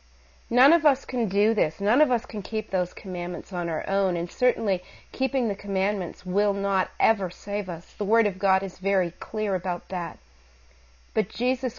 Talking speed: 190 wpm